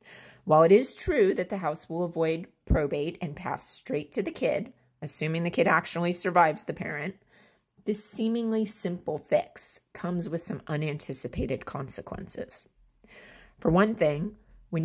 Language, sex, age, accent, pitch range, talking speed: English, female, 30-49, American, 145-195 Hz, 145 wpm